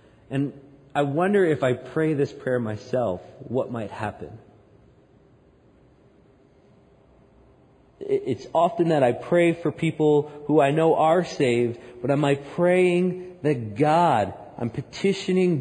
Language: English